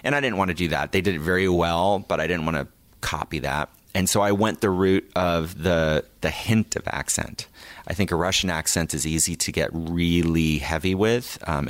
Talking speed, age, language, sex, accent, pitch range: 225 wpm, 30-49, English, male, American, 75-90 Hz